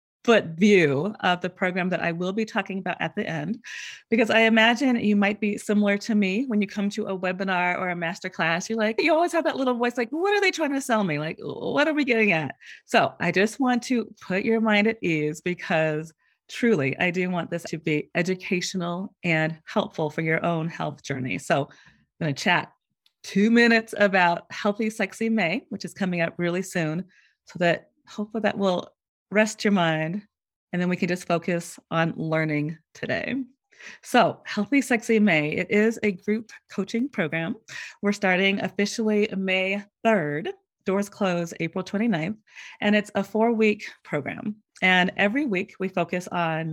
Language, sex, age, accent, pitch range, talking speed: English, female, 30-49, American, 175-220 Hz, 185 wpm